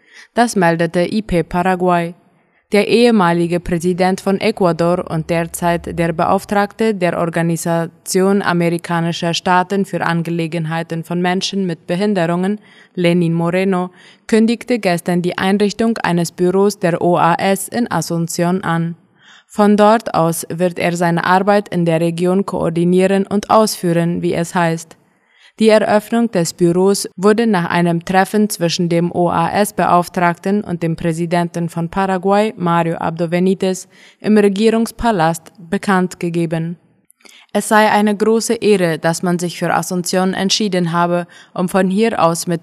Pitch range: 170-200 Hz